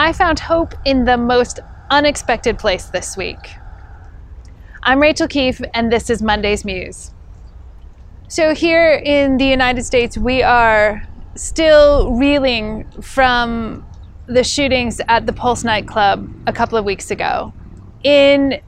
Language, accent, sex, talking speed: English, American, female, 130 wpm